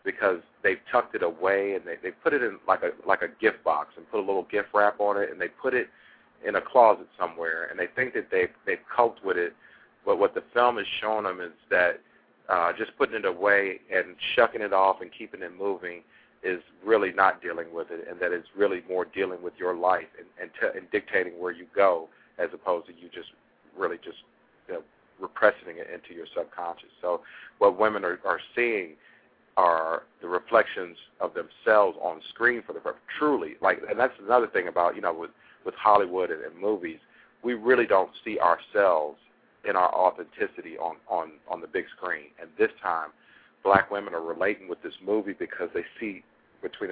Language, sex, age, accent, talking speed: English, male, 50-69, American, 205 wpm